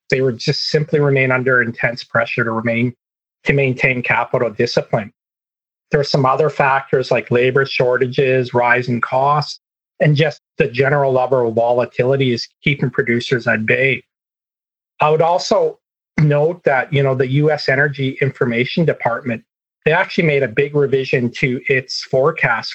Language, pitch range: English, 125-150 Hz